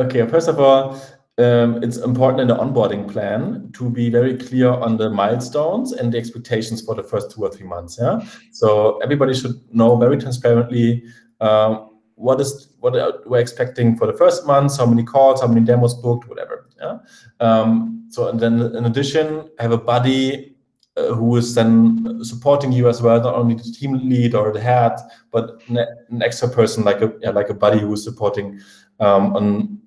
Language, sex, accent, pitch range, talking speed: English, male, German, 110-125 Hz, 190 wpm